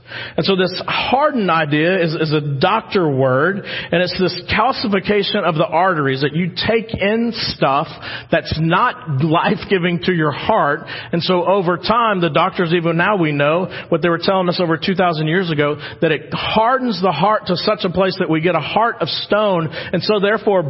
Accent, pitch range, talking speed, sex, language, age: American, 155-200 Hz, 190 wpm, male, English, 40-59